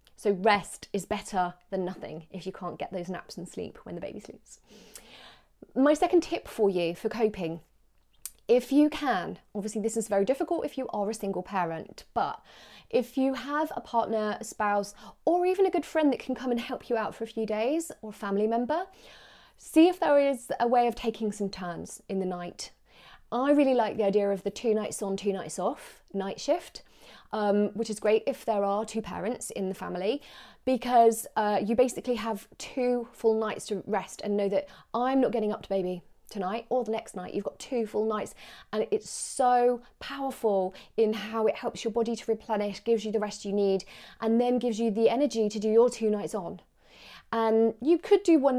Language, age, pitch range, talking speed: English, 30-49, 200-245 Hz, 210 wpm